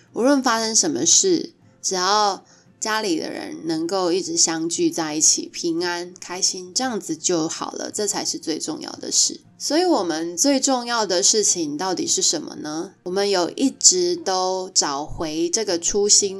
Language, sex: Chinese, female